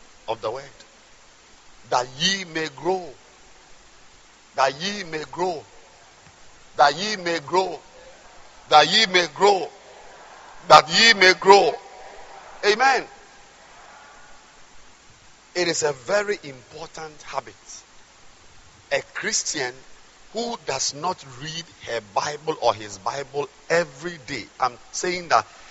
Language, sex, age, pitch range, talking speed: English, male, 50-69, 150-210 Hz, 105 wpm